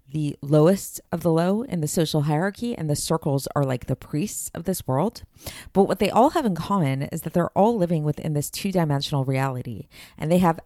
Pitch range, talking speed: 140-180 Hz, 215 wpm